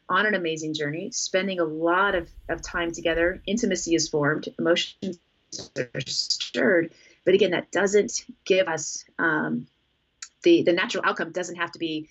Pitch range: 160-190 Hz